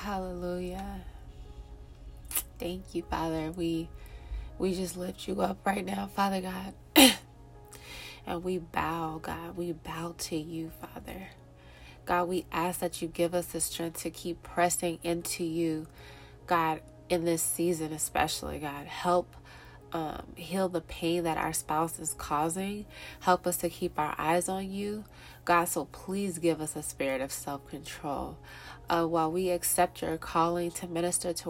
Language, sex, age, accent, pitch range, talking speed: English, female, 20-39, American, 160-180 Hz, 150 wpm